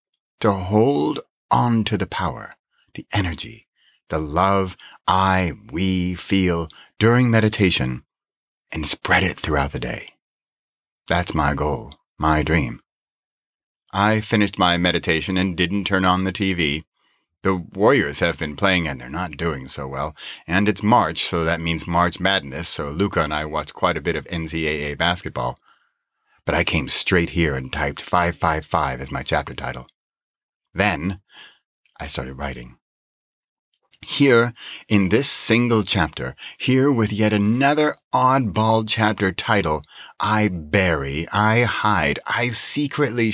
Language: English